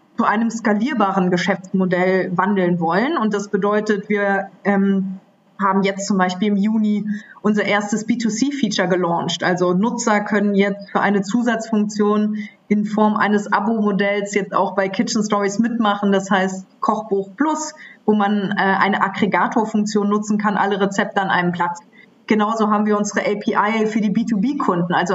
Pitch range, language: 195-230 Hz, German